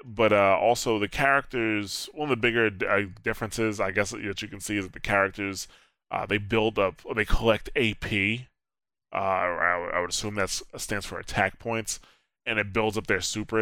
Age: 20-39